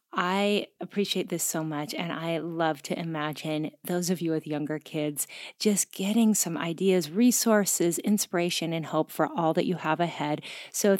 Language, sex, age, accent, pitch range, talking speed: English, female, 30-49, American, 165-205 Hz, 170 wpm